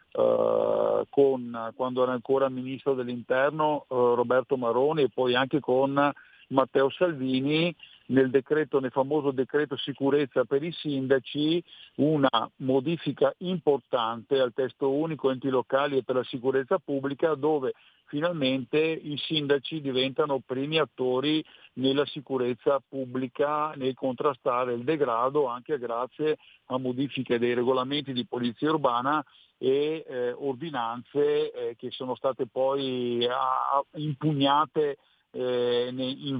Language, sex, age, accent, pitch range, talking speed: Italian, male, 50-69, native, 125-145 Hz, 125 wpm